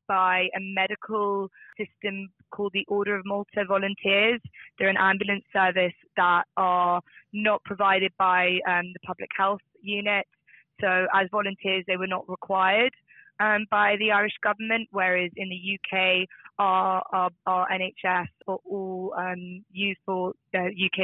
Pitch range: 185-210 Hz